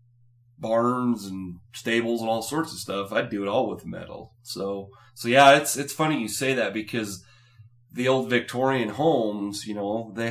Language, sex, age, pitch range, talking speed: English, male, 30-49, 95-120 Hz, 180 wpm